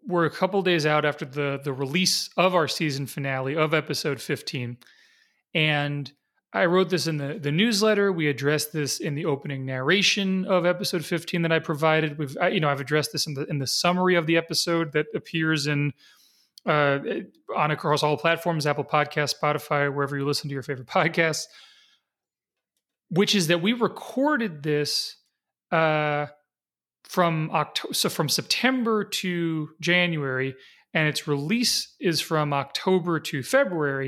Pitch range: 150-180 Hz